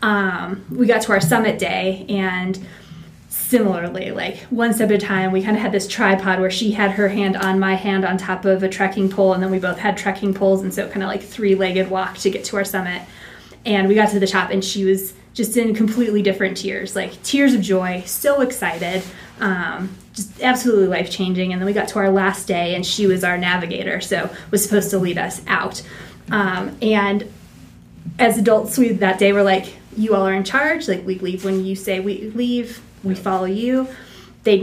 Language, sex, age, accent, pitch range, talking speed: English, female, 20-39, American, 190-220 Hz, 220 wpm